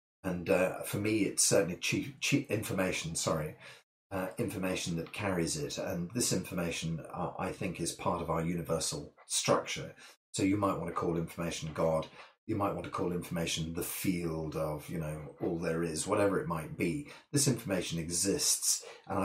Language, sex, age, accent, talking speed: English, male, 30-49, British, 180 wpm